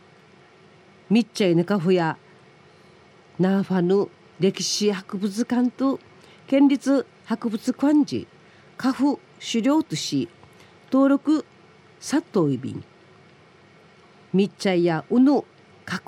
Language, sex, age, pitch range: Japanese, female, 40-59, 170-220 Hz